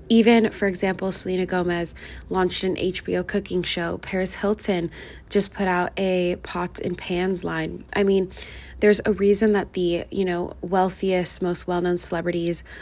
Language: English